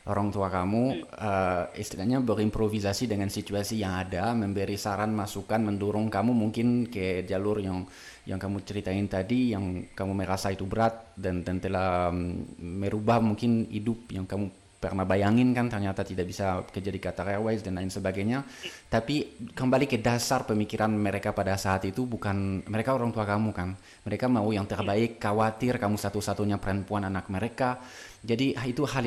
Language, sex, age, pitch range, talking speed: Indonesian, male, 20-39, 95-115 Hz, 155 wpm